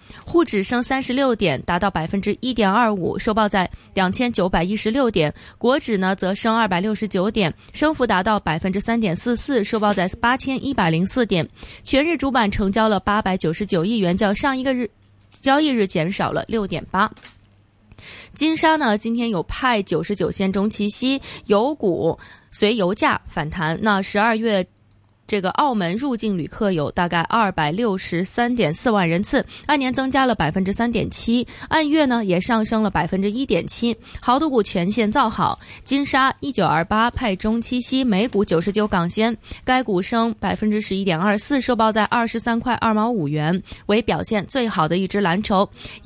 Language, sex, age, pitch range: Chinese, female, 20-39, 190-240 Hz